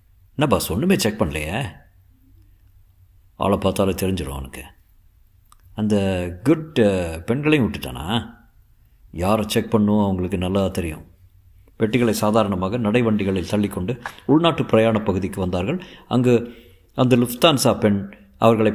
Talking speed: 105 wpm